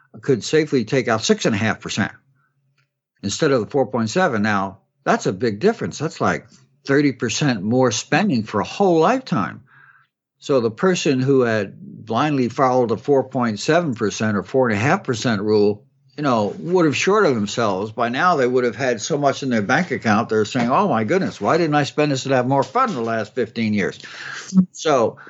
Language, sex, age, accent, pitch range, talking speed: English, male, 60-79, American, 115-155 Hz, 175 wpm